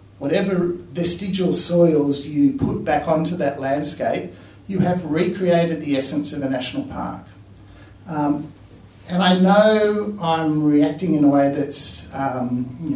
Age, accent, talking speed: 50-69, Australian, 140 wpm